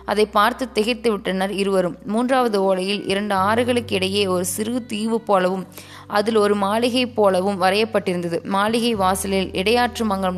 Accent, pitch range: native, 190-220 Hz